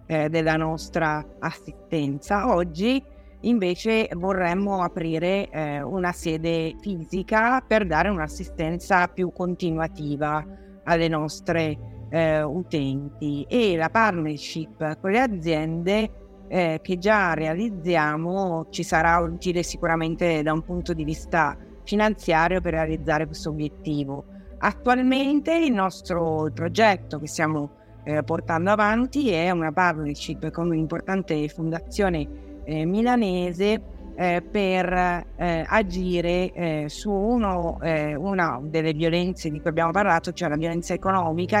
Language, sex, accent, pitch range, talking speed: Italian, female, native, 160-190 Hz, 115 wpm